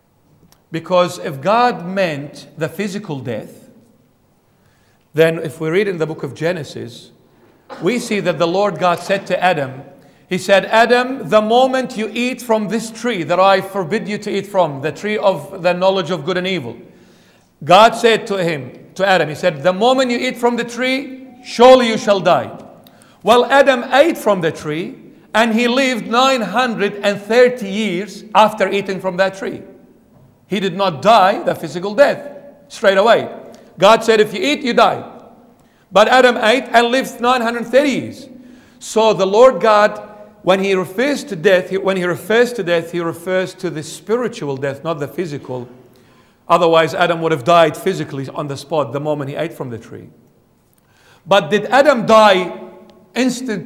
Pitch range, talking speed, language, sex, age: 170-230 Hz, 175 wpm, English, male, 50-69